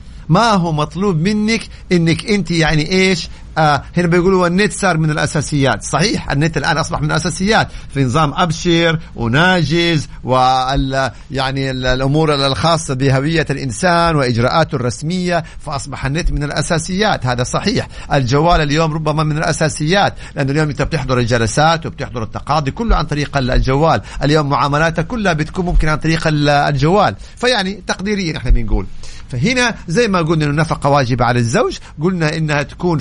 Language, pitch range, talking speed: Arabic, 140-190 Hz, 140 wpm